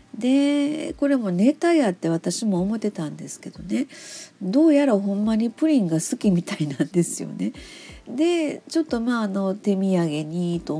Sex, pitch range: female, 165-215 Hz